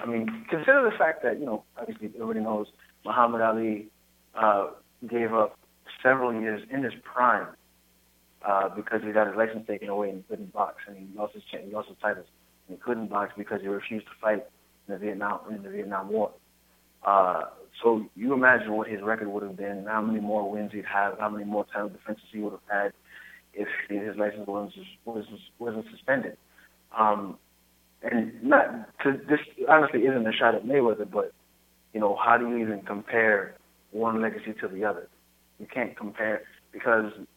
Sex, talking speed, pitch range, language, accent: male, 185 wpm, 95-110 Hz, English, American